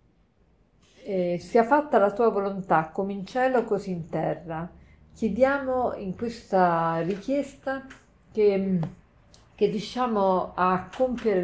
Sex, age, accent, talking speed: female, 50-69, native, 110 wpm